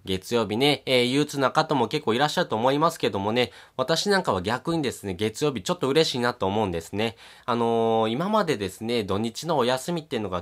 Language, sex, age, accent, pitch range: Japanese, male, 20-39, native, 105-145 Hz